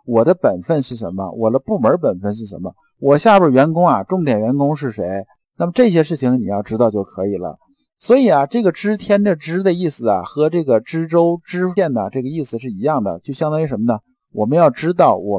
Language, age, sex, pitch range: Chinese, 50-69, male, 120-180 Hz